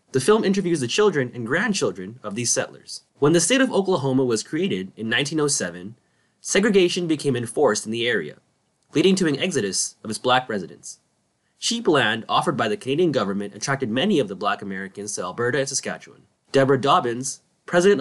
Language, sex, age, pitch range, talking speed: English, male, 20-39, 115-170 Hz, 175 wpm